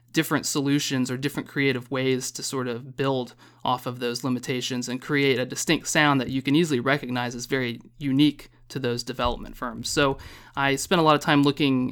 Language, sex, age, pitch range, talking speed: English, male, 30-49, 125-145 Hz, 195 wpm